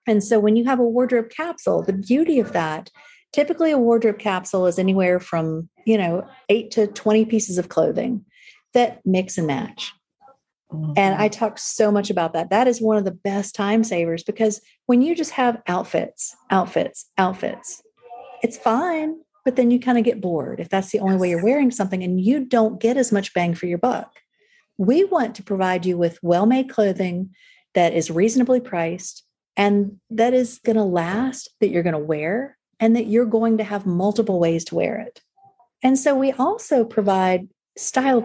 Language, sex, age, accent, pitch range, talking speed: English, female, 40-59, American, 190-255 Hz, 190 wpm